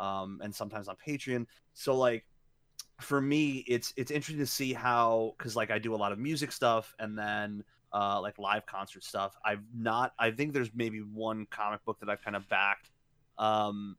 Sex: male